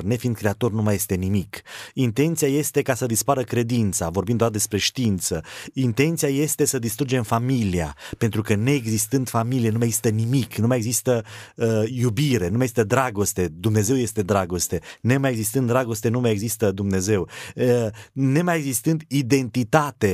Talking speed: 155 wpm